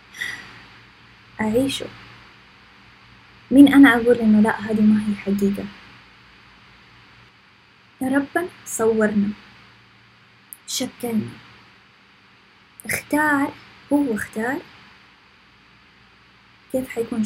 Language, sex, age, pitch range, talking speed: English, female, 20-39, 205-255 Hz, 65 wpm